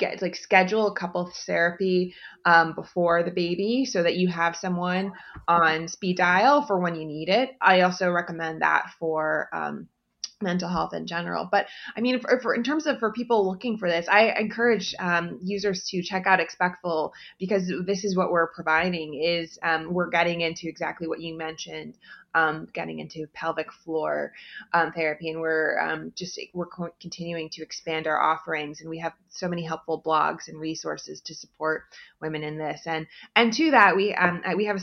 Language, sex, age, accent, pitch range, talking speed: English, female, 20-39, American, 165-205 Hz, 185 wpm